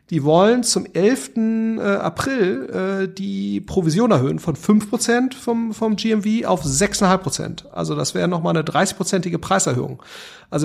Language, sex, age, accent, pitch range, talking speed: German, male, 40-59, German, 170-200 Hz, 135 wpm